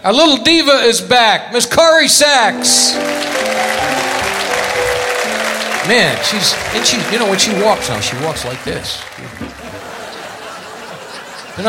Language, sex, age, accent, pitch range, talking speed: English, male, 60-79, American, 120-200 Hz, 120 wpm